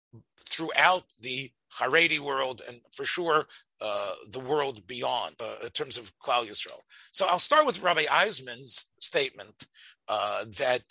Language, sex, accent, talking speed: English, male, American, 145 wpm